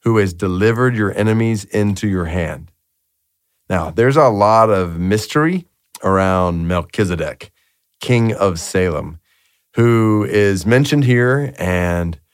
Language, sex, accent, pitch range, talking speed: English, male, American, 100-135 Hz, 115 wpm